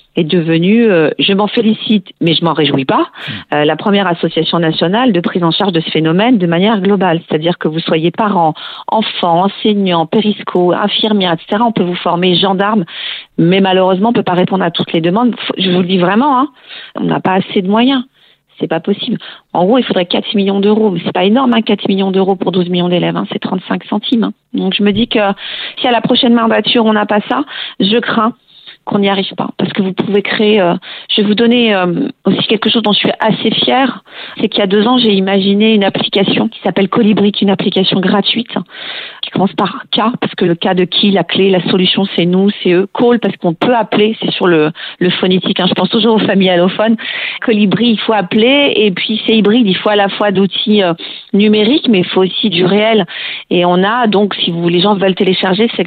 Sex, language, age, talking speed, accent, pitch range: female, French, 40-59, 235 wpm, French, 185-225 Hz